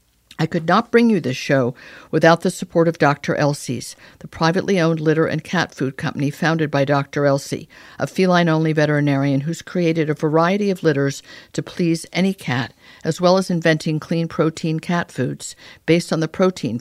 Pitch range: 145-180 Hz